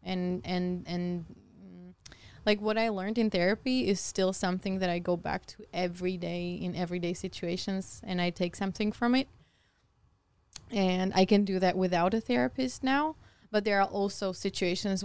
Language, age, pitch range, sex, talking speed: Slovak, 20-39, 180-215 Hz, female, 170 wpm